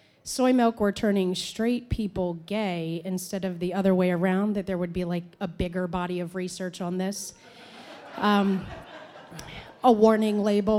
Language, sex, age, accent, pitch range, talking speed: English, female, 30-49, American, 185-230 Hz, 160 wpm